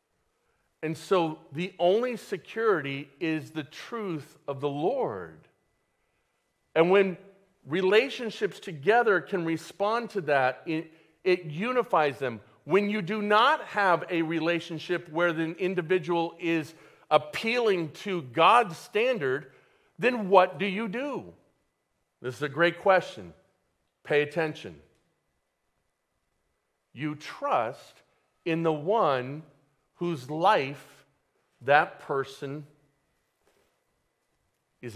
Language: English